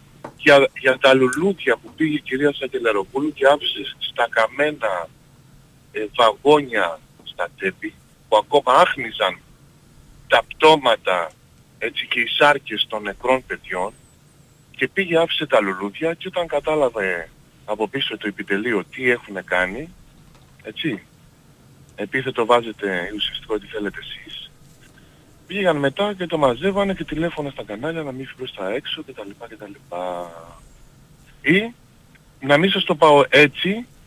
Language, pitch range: Greek, 120-165 Hz